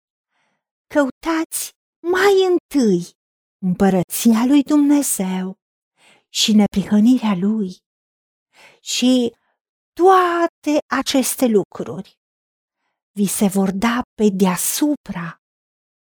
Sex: female